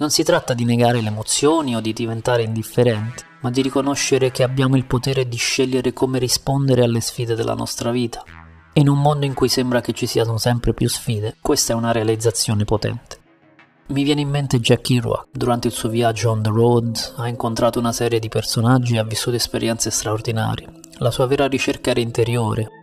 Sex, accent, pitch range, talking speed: male, native, 115-130 Hz, 195 wpm